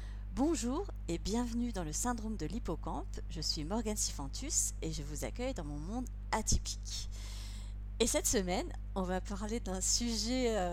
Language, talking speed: French, 155 wpm